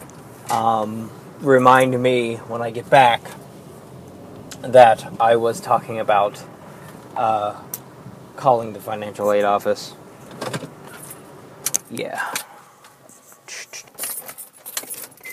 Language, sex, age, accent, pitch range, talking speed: English, male, 20-39, American, 140-200 Hz, 75 wpm